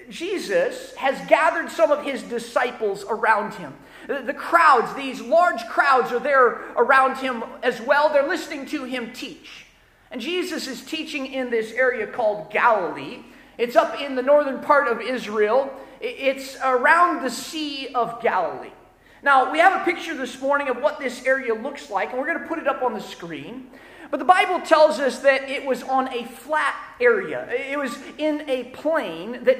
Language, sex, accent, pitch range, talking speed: English, male, American, 245-310 Hz, 180 wpm